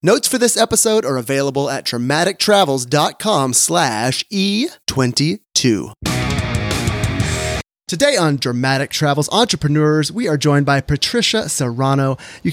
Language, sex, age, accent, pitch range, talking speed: English, male, 30-49, American, 135-195 Hz, 105 wpm